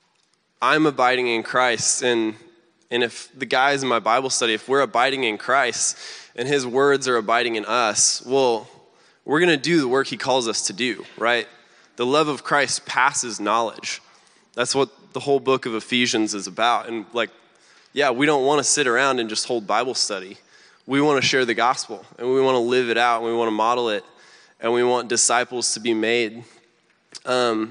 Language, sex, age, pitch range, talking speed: English, male, 20-39, 115-135 Hz, 205 wpm